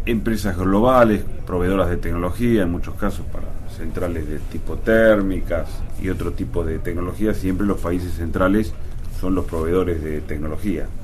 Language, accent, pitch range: Chinese, Argentinian, 80-95 Hz